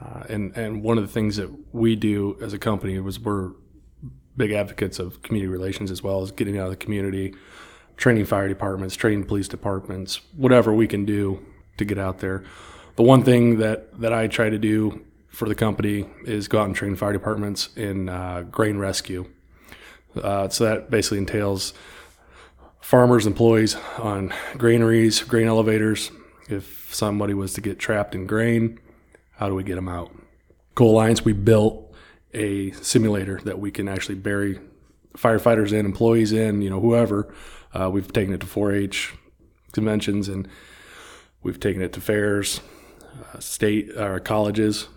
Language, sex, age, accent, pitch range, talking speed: English, male, 20-39, American, 95-110 Hz, 165 wpm